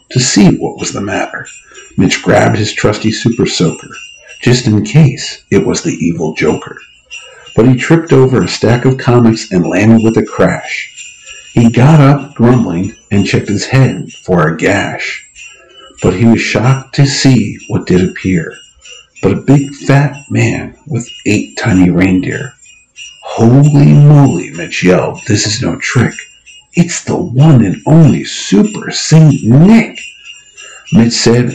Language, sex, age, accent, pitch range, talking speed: English, male, 50-69, American, 115-145 Hz, 150 wpm